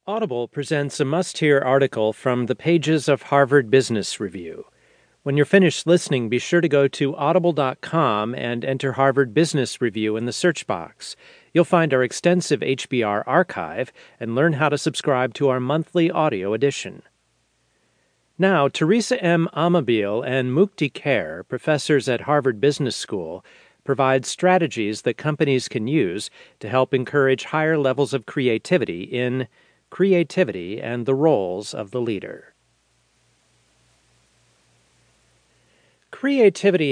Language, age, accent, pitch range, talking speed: English, 40-59, American, 125-160 Hz, 130 wpm